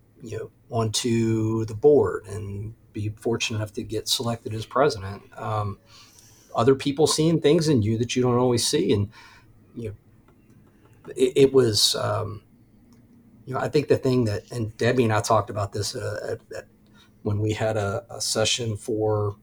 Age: 40-59